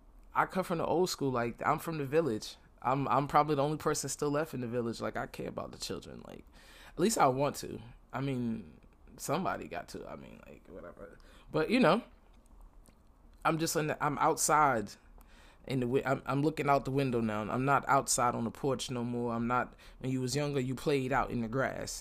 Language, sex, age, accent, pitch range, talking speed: English, male, 20-39, American, 115-140 Hz, 220 wpm